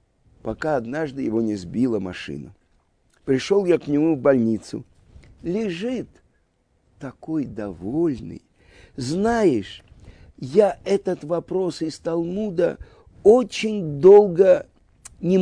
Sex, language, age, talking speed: male, Russian, 50-69, 95 wpm